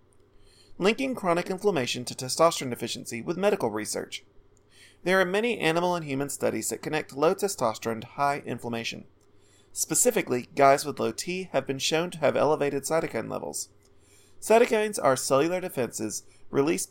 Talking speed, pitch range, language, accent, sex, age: 145 wpm, 110-175 Hz, English, American, male, 30-49